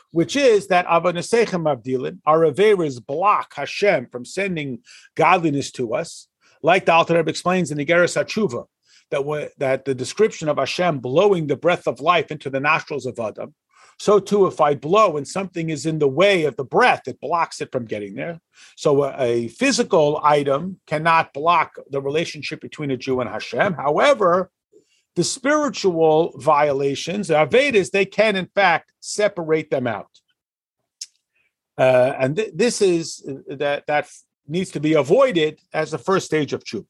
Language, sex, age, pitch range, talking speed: English, male, 50-69, 145-195 Hz, 165 wpm